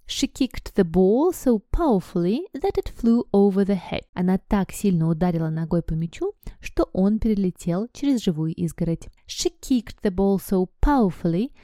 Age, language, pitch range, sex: 20-39, Russian, 175-240 Hz, female